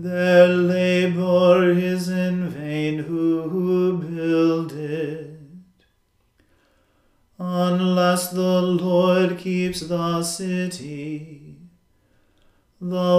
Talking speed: 75 wpm